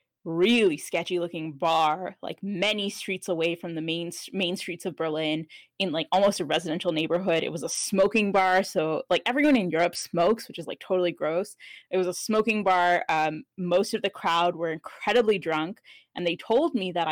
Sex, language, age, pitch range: female, English, 10-29, 170-205 Hz